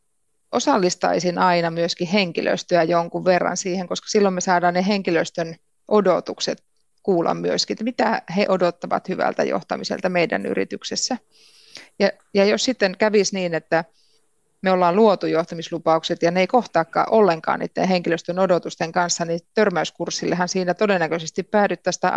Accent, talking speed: native, 135 wpm